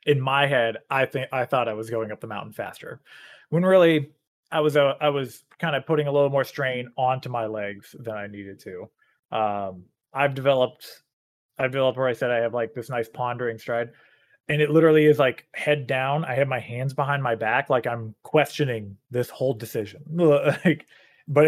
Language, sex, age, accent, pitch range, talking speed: English, male, 20-39, American, 115-145 Hz, 200 wpm